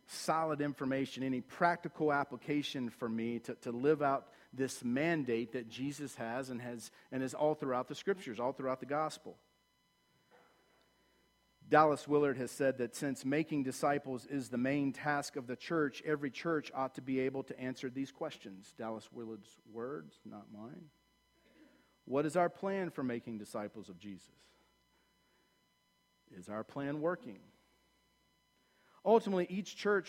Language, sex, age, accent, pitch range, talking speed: English, male, 50-69, American, 120-150 Hz, 150 wpm